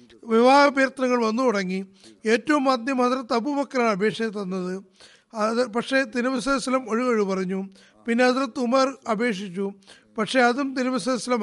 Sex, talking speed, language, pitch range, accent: male, 110 wpm, Malayalam, 205-260 Hz, native